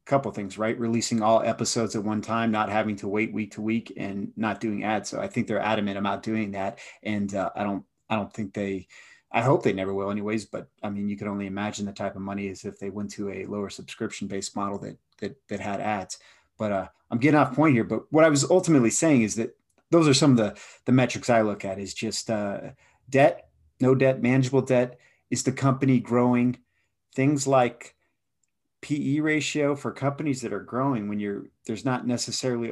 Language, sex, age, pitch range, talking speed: English, male, 30-49, 100-125 Hz, 220 wpm